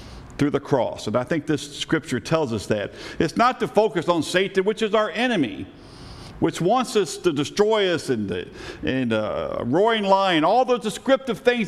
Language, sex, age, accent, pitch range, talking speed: English, male, 50-69, American, 140-215 Hz, 190 wpm